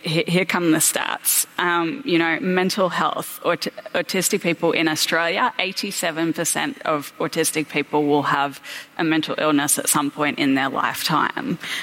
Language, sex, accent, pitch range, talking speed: English, female, Australian, 155-205 Hz, 145 wpm